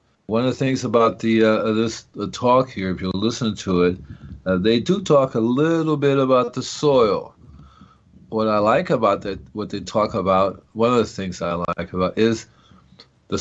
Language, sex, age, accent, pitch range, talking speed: English, male, 50-69, American, 95-120 Hz, 195 wpm